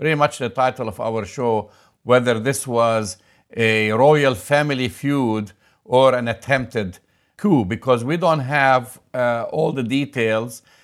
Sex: male